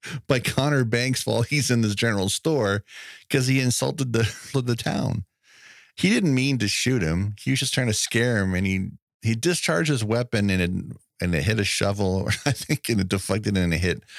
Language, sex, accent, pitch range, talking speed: English, male, American, 90-120 Hz, 210 wpm